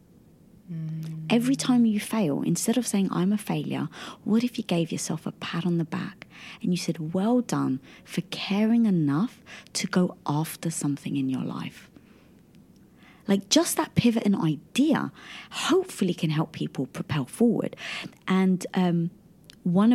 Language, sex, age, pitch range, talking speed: English, female, 30-49, 160-220 Hz, 150 wpm